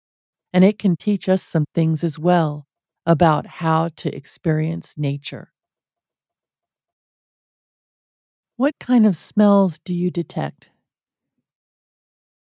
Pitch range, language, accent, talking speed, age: 155-195 Hz, English, American, 100 wpm, 40-59